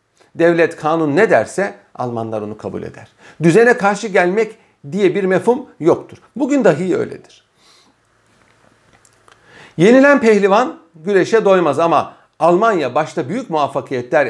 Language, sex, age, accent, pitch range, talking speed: Turkish, male, 50-69, native, 130-195 Hz, 115 wpm